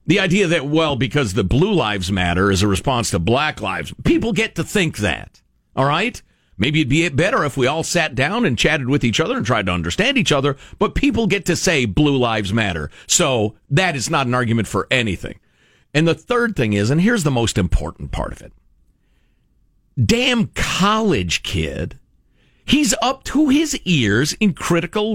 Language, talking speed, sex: English, 195 wpm, male